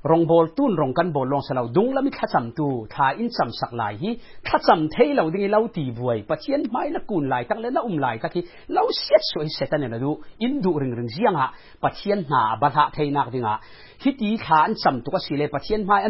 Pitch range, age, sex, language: 125-195 Hz, 40-59, male, English